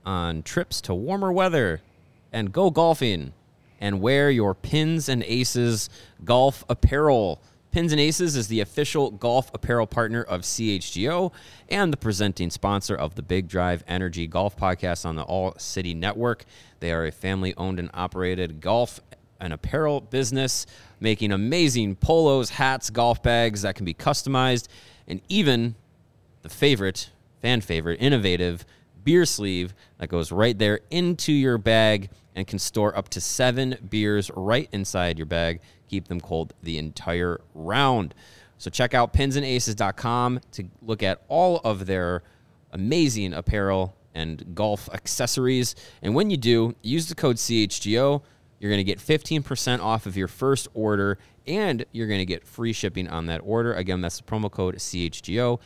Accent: American